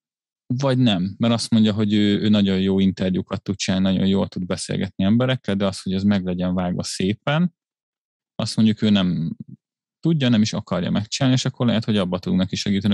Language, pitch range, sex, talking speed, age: Hungarian, 95-120 Hz, male, 200 wpm, 30-49